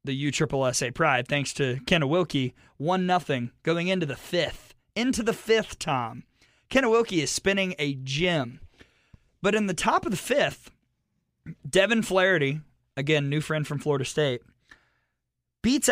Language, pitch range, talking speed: English, 130-180 Hz, 155 wpm